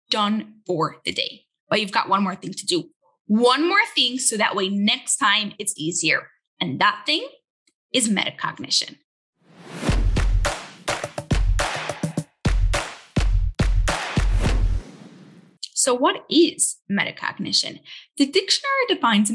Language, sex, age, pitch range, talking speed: English, female, 10-29, 195-290 Hz, 105 wpm